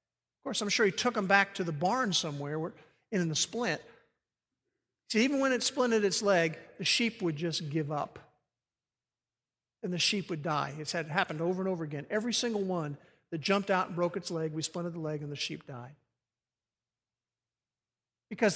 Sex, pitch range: male, 145-210 Hz